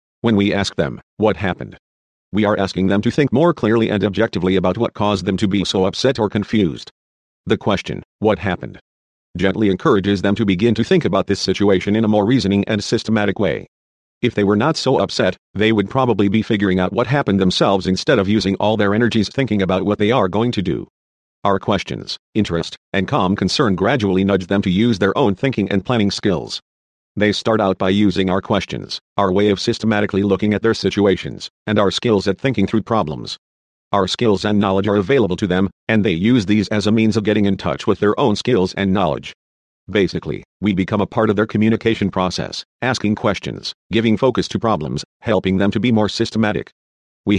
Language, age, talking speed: English, 50-69, 205 wpm